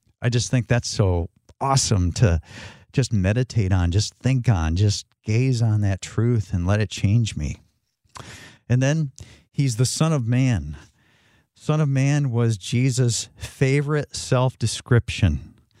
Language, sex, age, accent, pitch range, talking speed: English, male, 50-69, American, 110-140 Hz, 140 wpm